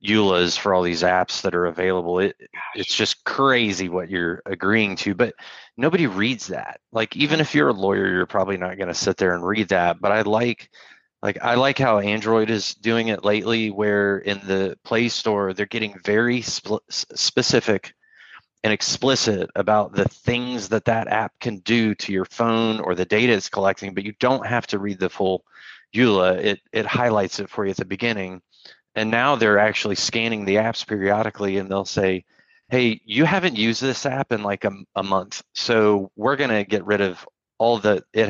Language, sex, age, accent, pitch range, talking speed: English, male, 30-49, American, 95-115 Hz, 195 wpm